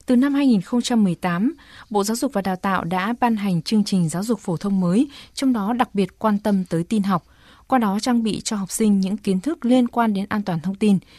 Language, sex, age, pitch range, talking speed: Vietnamese, female, 20-39, 185-235 Hz, 240 wpm